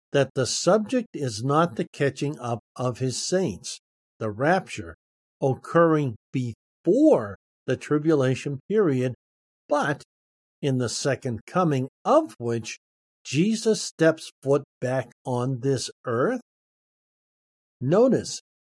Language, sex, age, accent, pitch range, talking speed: English, male, 50-69, American, 120-170 Hz, 105 wpm